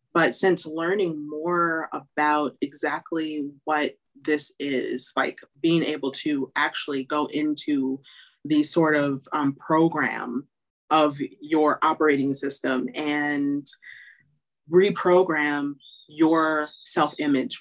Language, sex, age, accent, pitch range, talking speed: English, female, 30-49, American, 150-190 Hz, 100 wpm